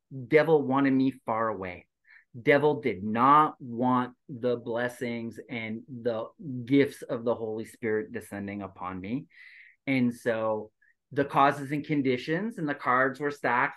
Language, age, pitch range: English, 30-49, 115-145 Hz